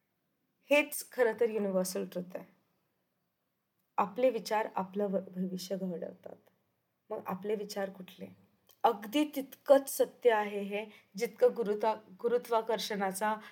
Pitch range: 185-245 Hz